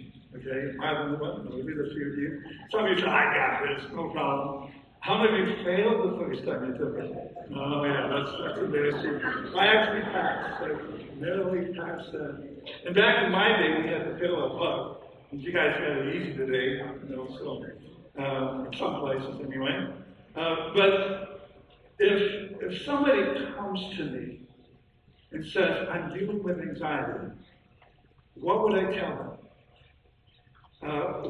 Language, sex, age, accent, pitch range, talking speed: English, male, 60-79, American, 140-190 Hz, 165 wpm